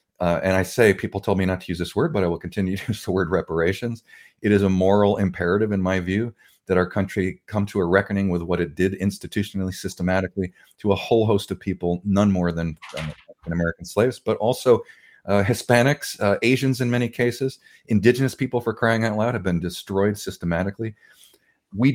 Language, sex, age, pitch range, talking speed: English, male, 40-59, 90-110 Hz, 200 wpm